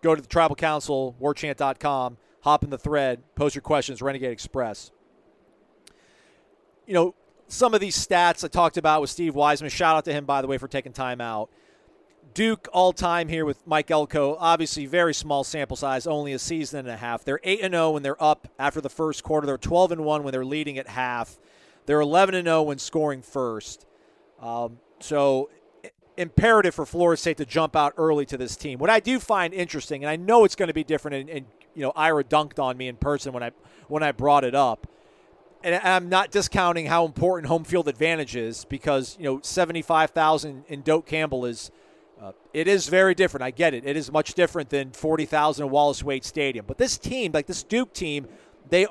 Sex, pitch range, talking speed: male, 135-170 Hz, 200 wpm